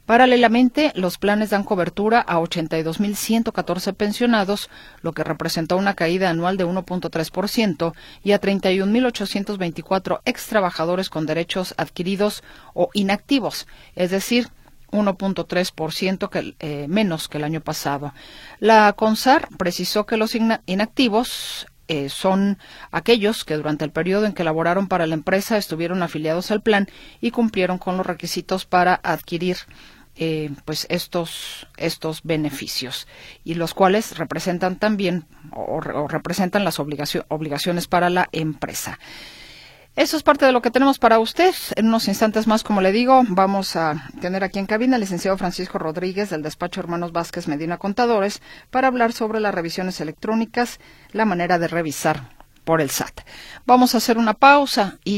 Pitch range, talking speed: 165-215 Hz, 145 wpm